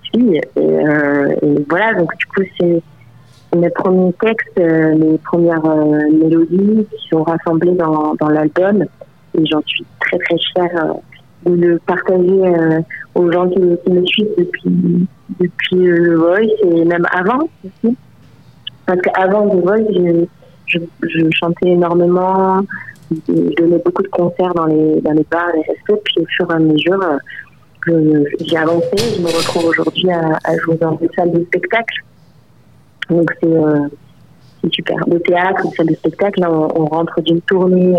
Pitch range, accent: 160-180 Hz, French